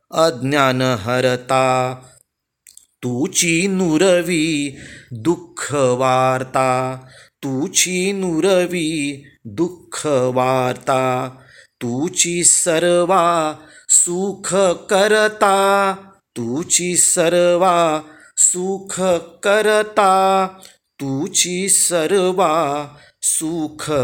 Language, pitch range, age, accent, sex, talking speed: Marathi, 130-175 Hz, 30-49, native, male, 45 wpm